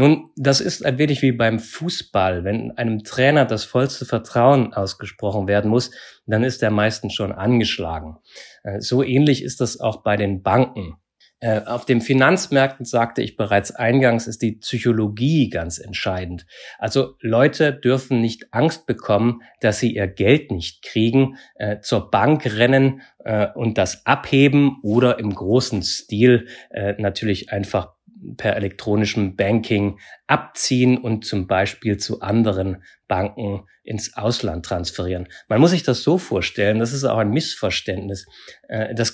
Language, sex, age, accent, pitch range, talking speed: German, male, 30-49, German, 100-130 Hz, 140 wpm